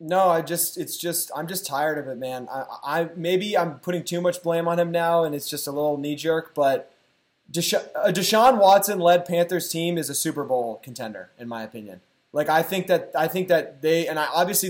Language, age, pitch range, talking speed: English, 20-39, 150-175 Hz, 225 wpm